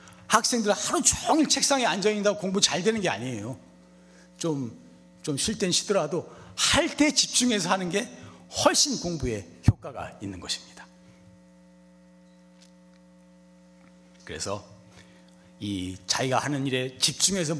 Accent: native